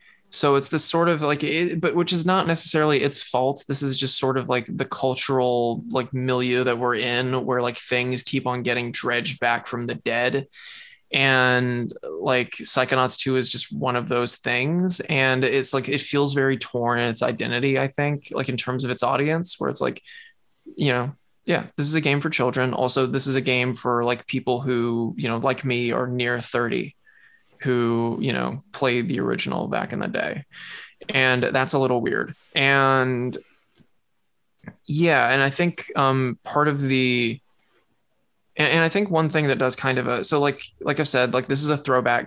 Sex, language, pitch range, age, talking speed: male, English, 125-145 Hz, 20-39, 195 wpm